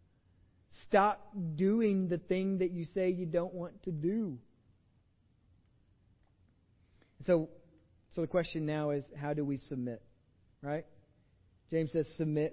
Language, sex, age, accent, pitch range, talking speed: English, male, 40-59, American, 140-175 Hz, 125 wpm